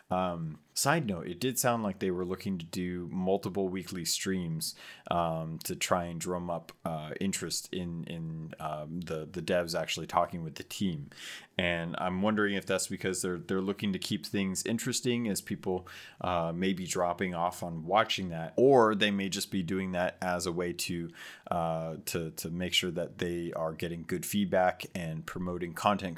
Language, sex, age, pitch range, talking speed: English, male, 30-49, 85-100 Hz, 190 wpm